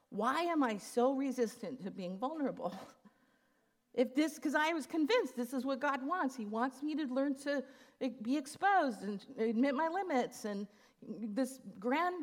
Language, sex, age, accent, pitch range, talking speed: English, female, 50-69, American, 205-265 Hz, 165 wpm